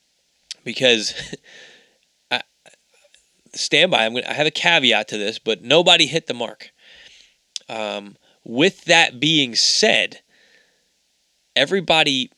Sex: male